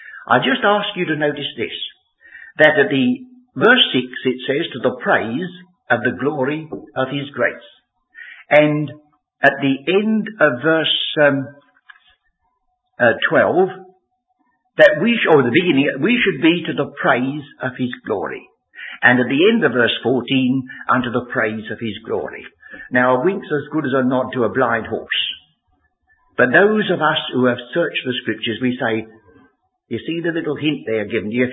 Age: 60-79